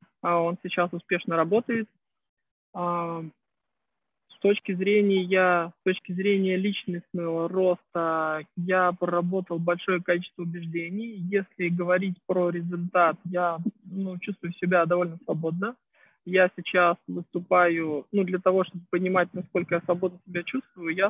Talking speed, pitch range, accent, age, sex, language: 120 wpm, 170-195 Hz, native, 20-39, male, Russian